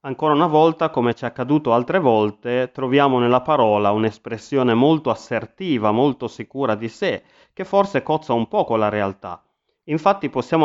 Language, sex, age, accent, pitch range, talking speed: Italian, male, 30-49, native, 110-145 Hz, 165 wpm